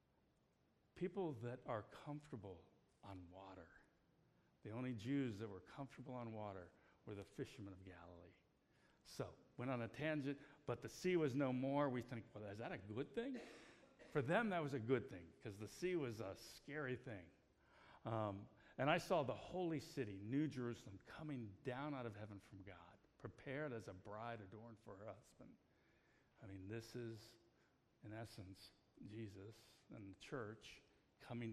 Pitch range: 100-135 Hz